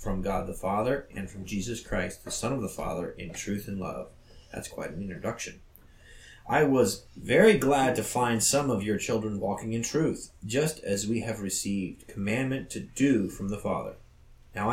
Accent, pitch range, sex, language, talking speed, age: American, 95-120 Hz, male, English, 185 wpm, 30-49